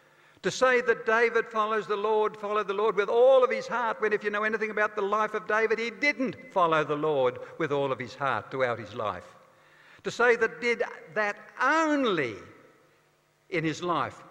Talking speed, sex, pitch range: 195 wpm, male, 140-220 Hz